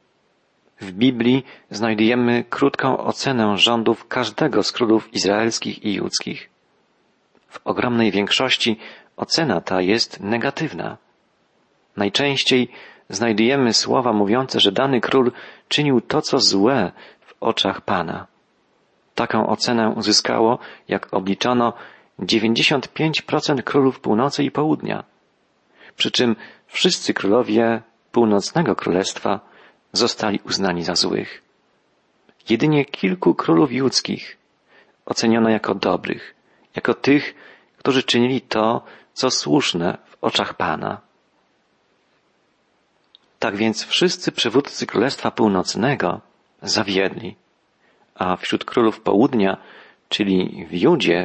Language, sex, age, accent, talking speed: Polish, male, 40-59, native, 100 wpm